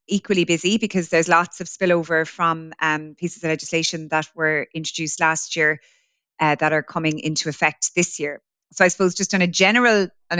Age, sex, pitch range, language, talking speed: 30-49, female, 155-170 Hz, English, 190 wpm